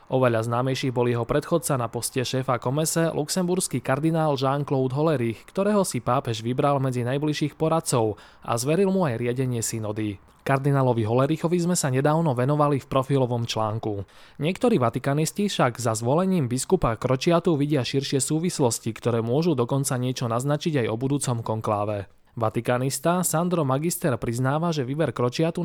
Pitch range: 120-160 Hz